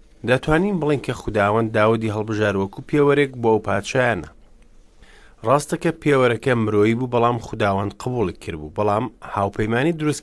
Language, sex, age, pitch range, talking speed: English, male, 30-49, 100-130 Hz, 160 wpm